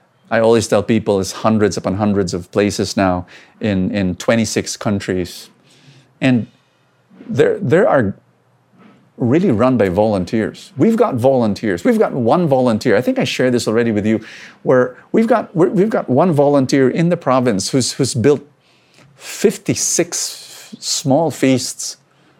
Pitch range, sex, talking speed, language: 110-165 Hz, male, 145 wpm, English